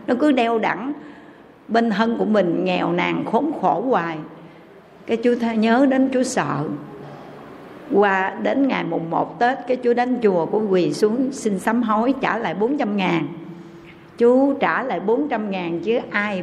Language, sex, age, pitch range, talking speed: Vietnamese, female, 60-79, 195-255 Hz, 170 wpm